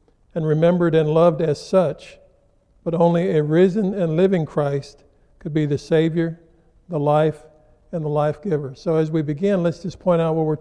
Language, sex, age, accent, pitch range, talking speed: English, male, 50-69, American, 150-175 Hz, 185 wpm